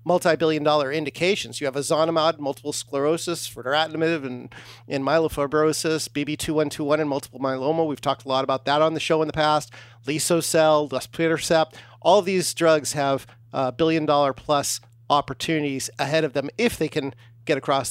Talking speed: 145 wpm